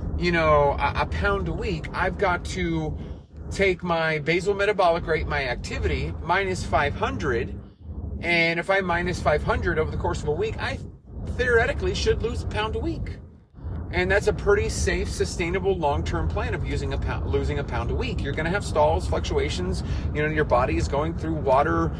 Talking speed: 190 wpm